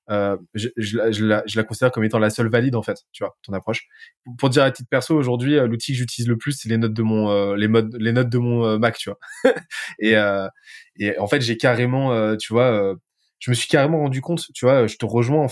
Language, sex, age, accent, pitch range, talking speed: French, male, 20-39, French, 105-120 Hz, 270 wpm